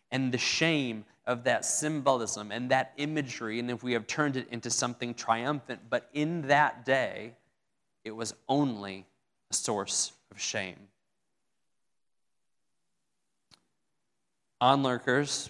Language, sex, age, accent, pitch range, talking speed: English, male, 30-49, American, 115-145 Hz, 115 wpm